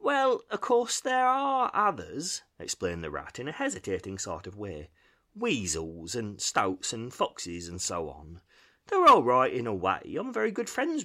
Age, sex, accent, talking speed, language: 30-49, male, British, 180 wpm, English